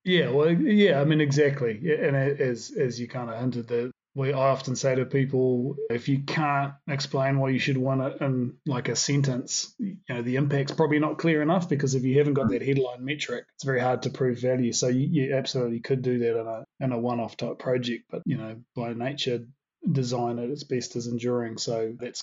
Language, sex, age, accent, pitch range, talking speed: English, male, 30-49, New Zealand, 125-145 Hz, 225 wpm